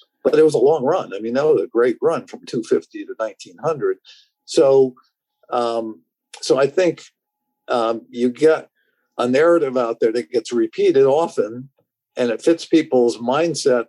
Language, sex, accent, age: English, male, American, 50-69